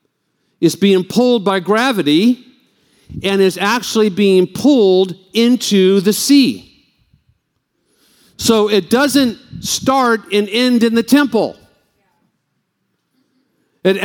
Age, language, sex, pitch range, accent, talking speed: 50-69, English, male, 190-245 Hz, American, 100 wpm